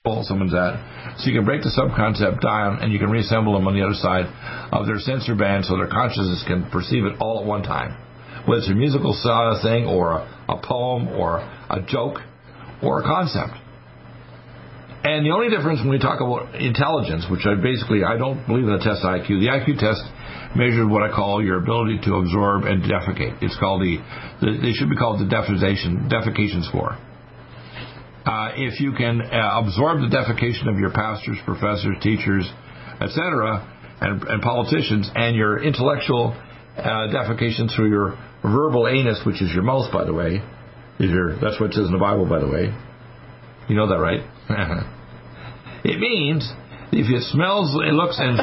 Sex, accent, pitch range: male, American, 100-125 Hz